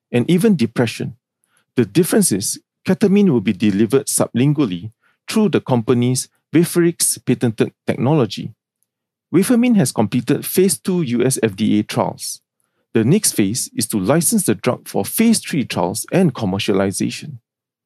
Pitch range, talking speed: 110-165 Hz, 130 wpm